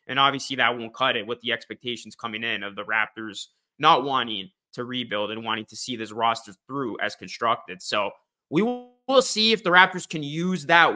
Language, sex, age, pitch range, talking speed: English, male, 20-39, 120-145 Hz, 205 wpm